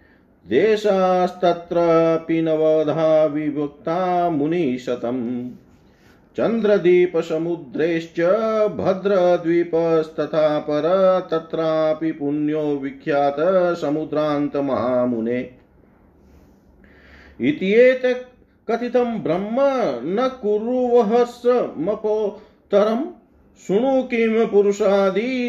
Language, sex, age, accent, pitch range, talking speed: Hindi, male, 40-59, native, 120-195 Hz, 40 wpm